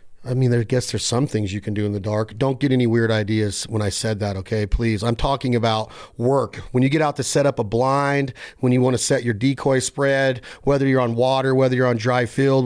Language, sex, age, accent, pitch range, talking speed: English, male, 40-59, American, 110-130 Hz, 255 wpm